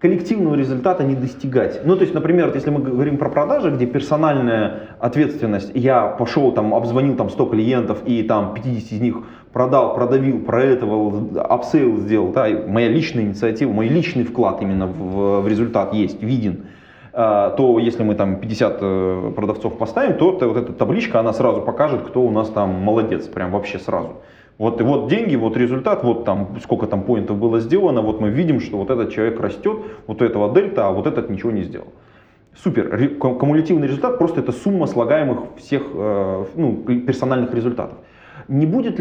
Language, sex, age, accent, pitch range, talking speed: Russian, male, 20-39, native, 105-135 Hz, 170 wpm